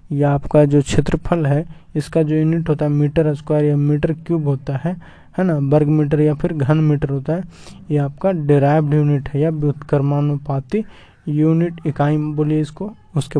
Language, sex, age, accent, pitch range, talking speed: Hindi, male, 20-39, native, 150-165 Hz, 175 wpm